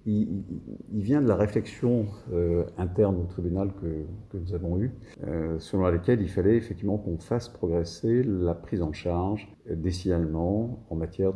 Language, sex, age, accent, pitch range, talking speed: English, male, 50-69, French, 85-110 Hz, 150 wpm